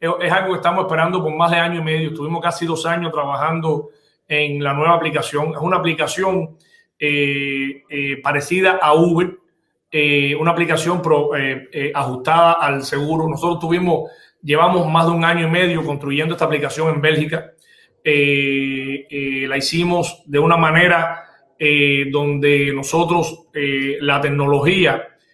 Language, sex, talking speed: English, male, 150 wpm